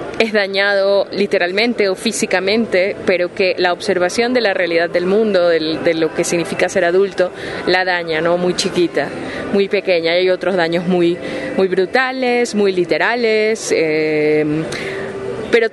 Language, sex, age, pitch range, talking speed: Spanish, female, 20-39, 170-200 Hz, 140 wpm